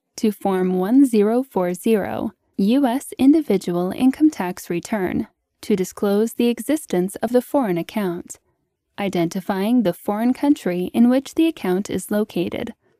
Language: English